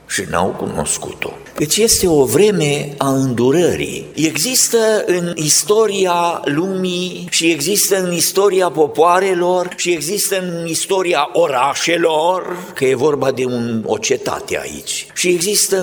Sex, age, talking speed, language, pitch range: male, 50-69, 125 wpm, Romanian, 175-295 Hz